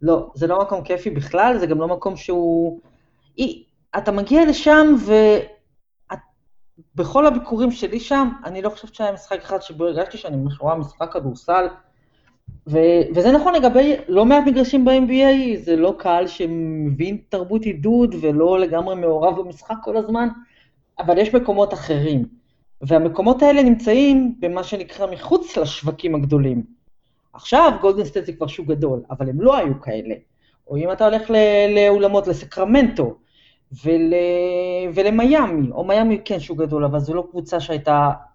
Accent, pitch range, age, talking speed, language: native, 155-225 Hz, 30-49, 145 wpm, Hebrew